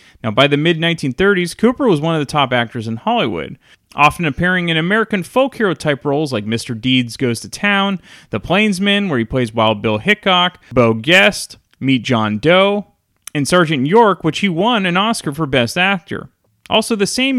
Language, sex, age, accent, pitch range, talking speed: English, male, 30-49, American, 135-210 Hz, 185 wpm